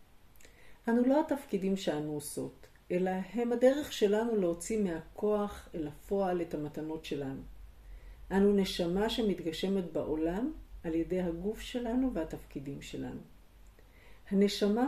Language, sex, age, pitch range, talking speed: Hebrew, female, 50-69, 150-210 Hz, 110 wpm